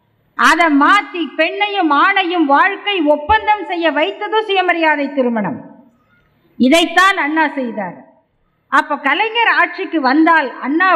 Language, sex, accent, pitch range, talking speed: Tamil, female, native, 270-350 Hz, 100 wpm